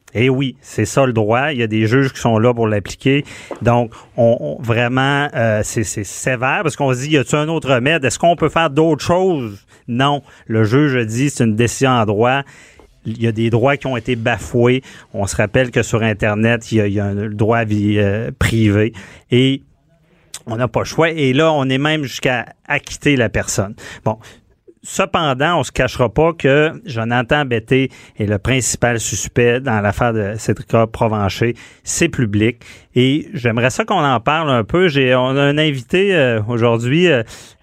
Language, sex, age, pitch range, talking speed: French, male, 40-59, 115-145 Hz, 205 wpm